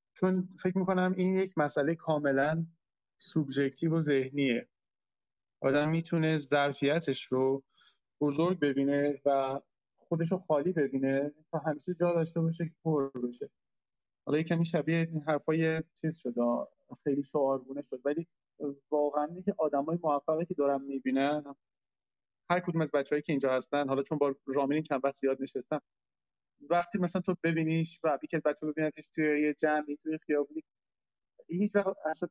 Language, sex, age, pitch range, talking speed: Persian, male, 30-49, 140-170 Hz, 145 wpm